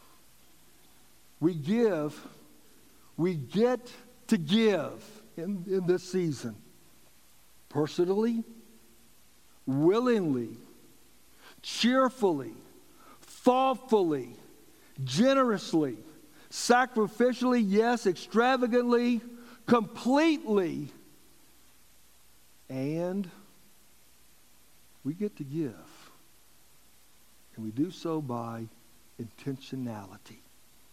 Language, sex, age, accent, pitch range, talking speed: English, male, 60-79, American, 150-235 Hz, 60 wpm